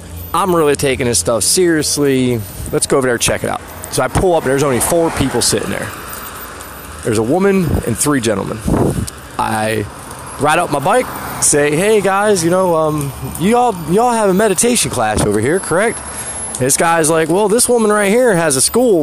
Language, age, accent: English, 30-49, American